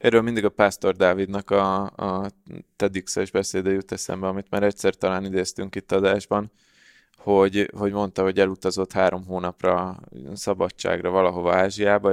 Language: Hungarian